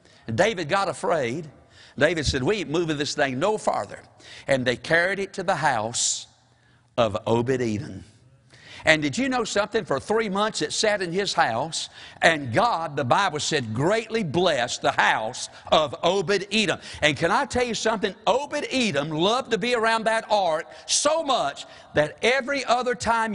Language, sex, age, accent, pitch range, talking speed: English, male, 60-79, American, 150-225 Hz, 165 wpm